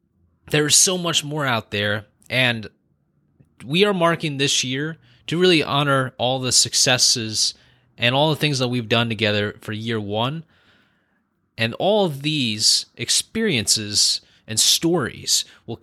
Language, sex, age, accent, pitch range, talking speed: English, male, 20-39, American, 110-155 Hz, 145 wpm